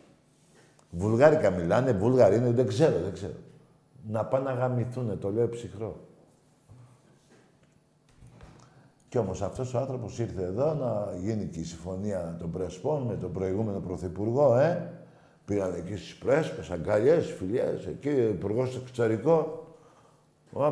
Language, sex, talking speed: Greek, male, 120 wpm